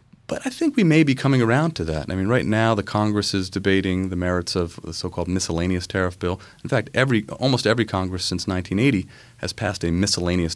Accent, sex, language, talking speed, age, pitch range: American, male, English, 215 wpm, 30-49, 90-110 Hz